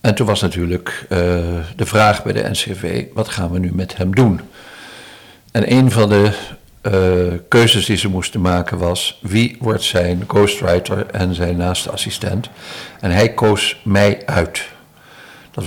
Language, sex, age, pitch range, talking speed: Dutch, male, 60-79, 90-110 Hz, 160 wpm